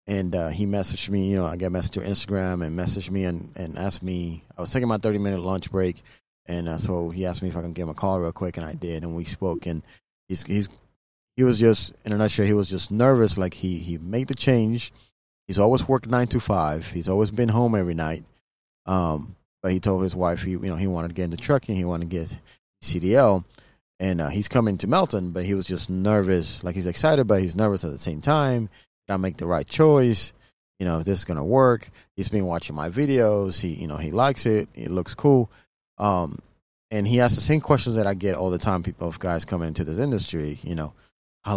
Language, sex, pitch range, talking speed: English, male, 90-110 Hz, 245 wpm